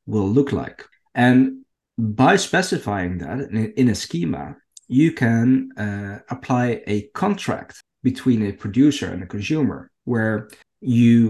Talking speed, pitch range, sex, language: 125 wpm, 100-130 Hz, male, English